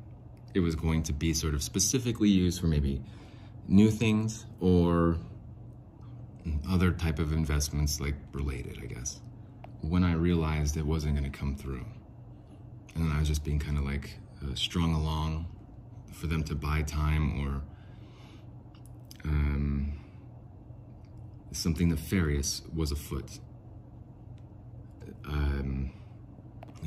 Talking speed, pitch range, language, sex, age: 120 wpm, 75-110 Hz, English, male, 30-49